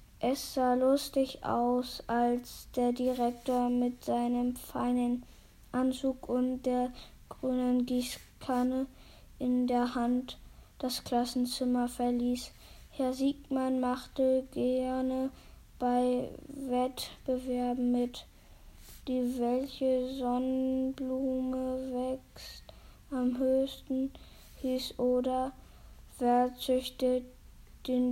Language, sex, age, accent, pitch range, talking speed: German, female, 20-39, German, 250-265 Hz, 85 wpm